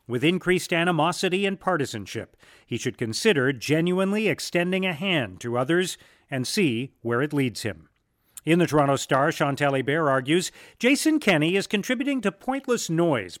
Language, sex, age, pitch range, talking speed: English, male, 40-59, 135-185 Hz, 150 wpm